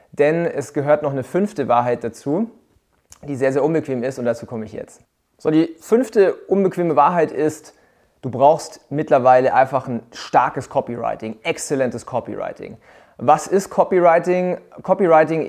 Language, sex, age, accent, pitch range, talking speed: German, male, 30-49, German, 125-160 Hz, 145 wpm